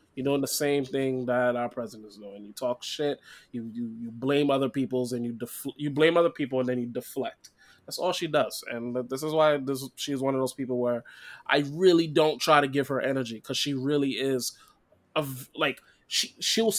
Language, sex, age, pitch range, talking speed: English, male, 20-39, 125-150 Hz, 220 wpm